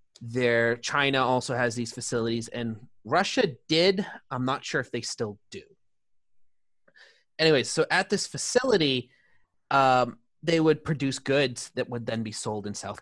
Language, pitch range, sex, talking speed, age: English, 120-160 Hz, male, 150 wpm, 30-49